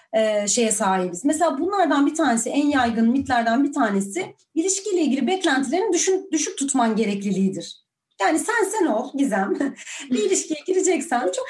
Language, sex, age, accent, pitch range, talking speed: Turkish, female, 30-49, native, 240-335 Hz, 135 wpm